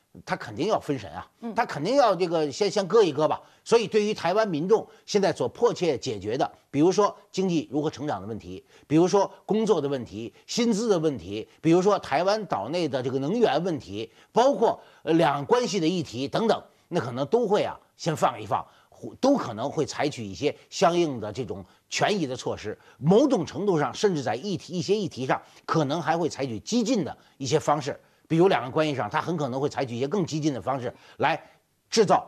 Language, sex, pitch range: Chinese, male, 140-215 Hz